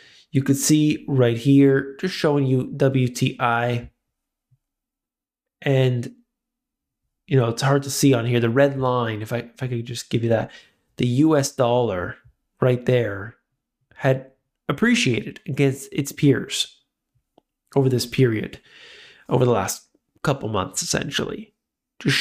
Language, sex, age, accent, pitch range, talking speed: English, male, 20-39, American, 120-165 Hz, 135 wpm